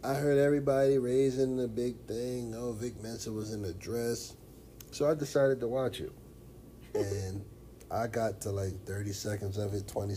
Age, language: 30-49, English